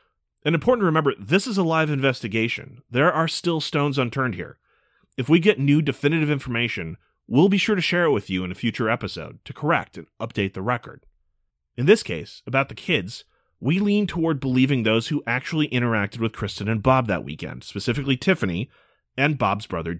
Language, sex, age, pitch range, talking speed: English, male, 30-49, 100-145 Hz, 190 wpm